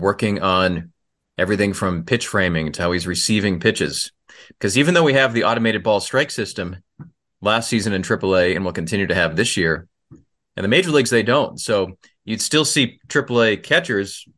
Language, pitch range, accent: English, 95-120 Hz, American